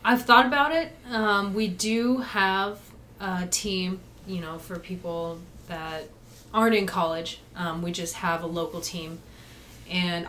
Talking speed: 150 wpm